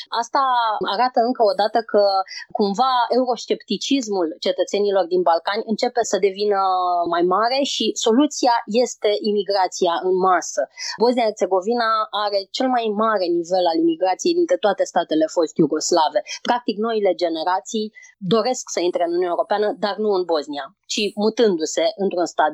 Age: 20-39